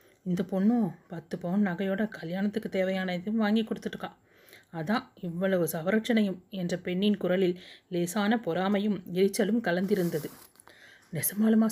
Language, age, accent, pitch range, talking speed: Tamil, 30-49, native, 180-220 Hz, 100 wpm